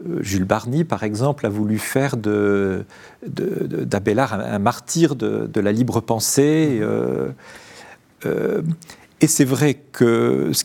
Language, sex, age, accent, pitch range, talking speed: French, male, 40-59, French, 115-165 Hz, 125 wpm